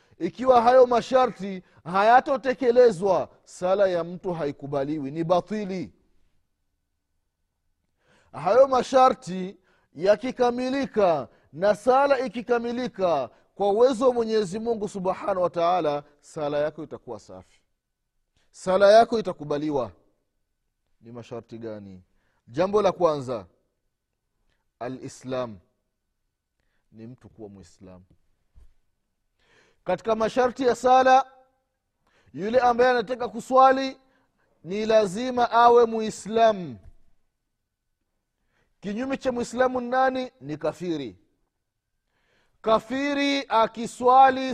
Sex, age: male, 30-49